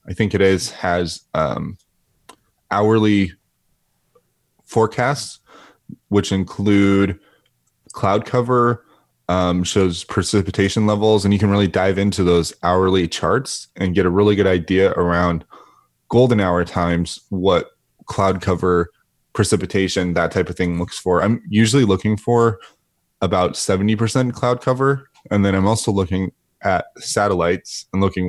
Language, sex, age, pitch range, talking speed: English, male, 20-39, 90-105 Hz, 130 wpm